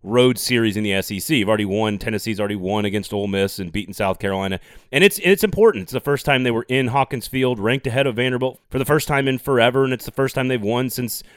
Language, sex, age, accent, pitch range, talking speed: English, male, 30-49, American, 105-135 Hz, 260 wpm